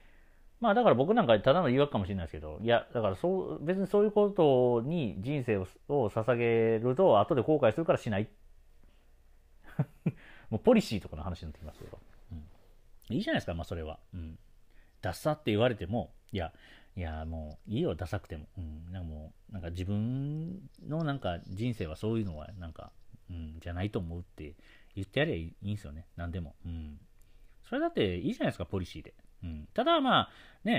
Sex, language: male, Japanese